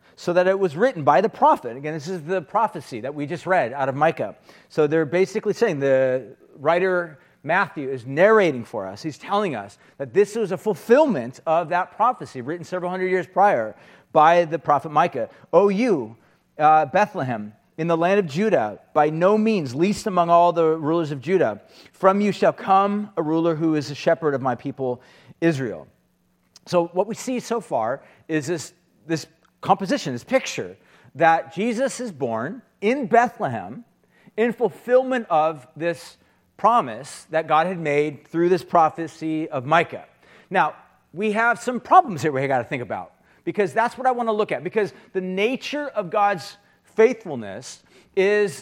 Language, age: English, 40-59